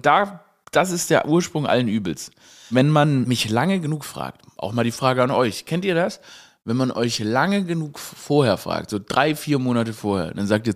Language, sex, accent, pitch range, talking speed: German, male, German, 110-160 Hz, 210 wpm